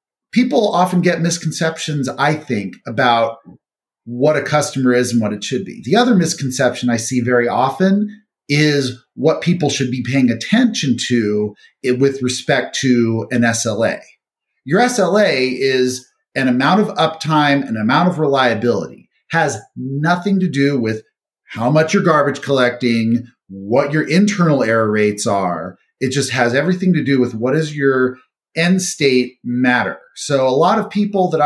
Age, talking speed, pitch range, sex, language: 40-59, 155 wpm, 125-165 Hz, male, English